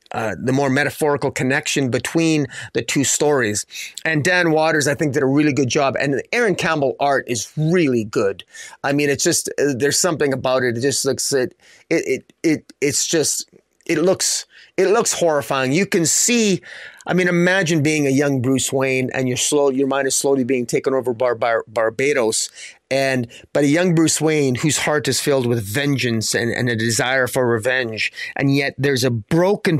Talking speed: 195 wpm